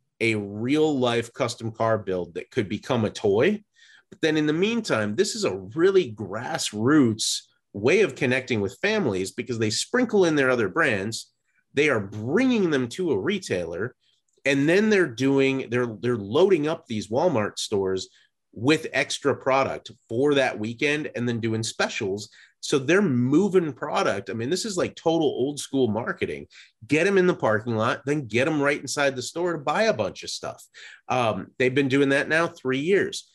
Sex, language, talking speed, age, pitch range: male, English, 180 wpm, 30-49, 115-145 Hz